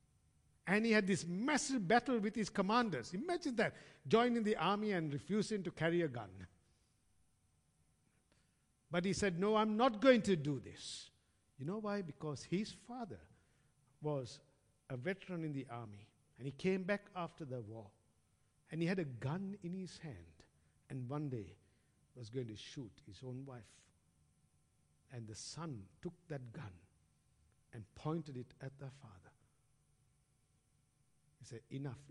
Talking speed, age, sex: 150 wpm, 60-79, male